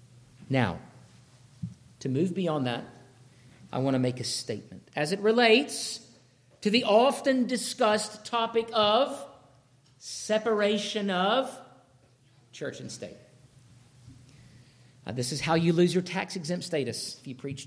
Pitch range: 140-210 Hz